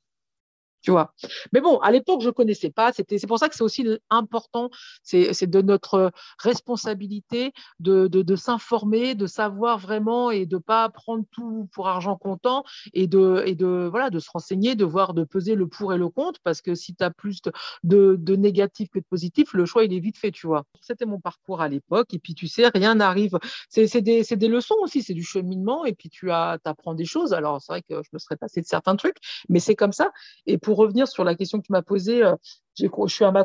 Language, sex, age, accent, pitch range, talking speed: French, female, 50-69, French, 175-230 Hz, 225 wpm